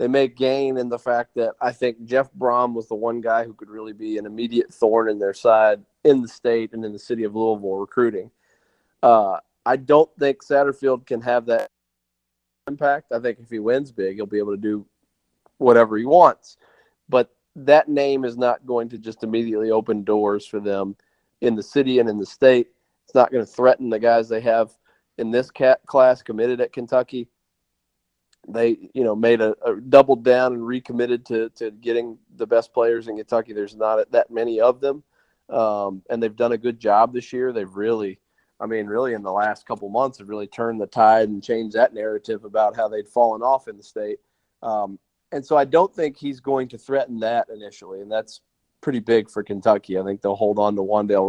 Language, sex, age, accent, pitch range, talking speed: English, male, 40-59, American, 105-125 Hz, 210 wpm